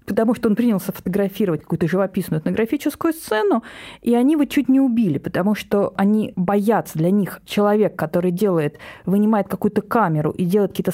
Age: 20-39